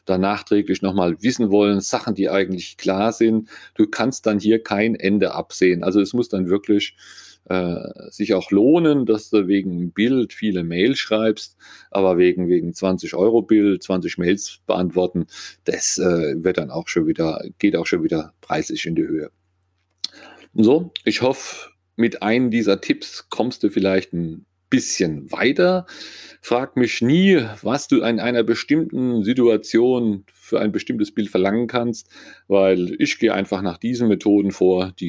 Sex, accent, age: male, German, 40-59